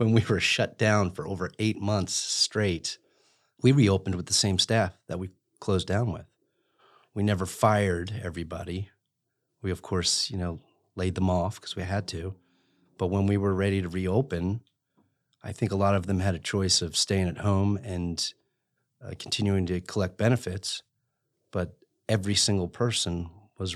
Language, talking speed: English, 170 wpm